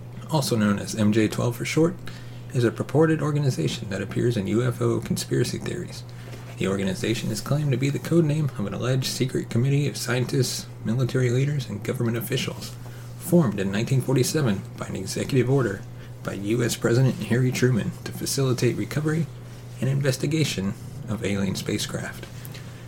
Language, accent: English, American